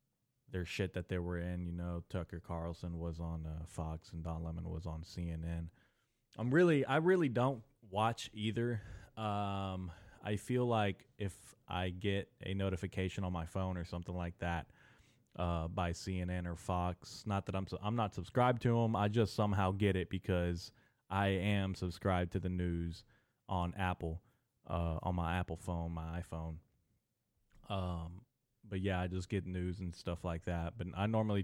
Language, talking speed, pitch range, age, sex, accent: English, 175 wpm, 85-105 Hz, 20-39, male, American